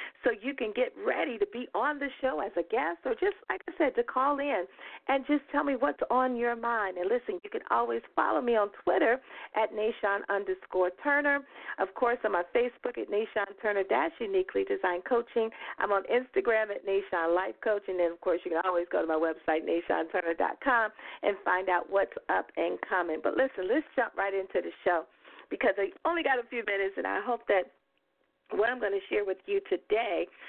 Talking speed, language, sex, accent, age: 215 wpm, English, female, American, 50-69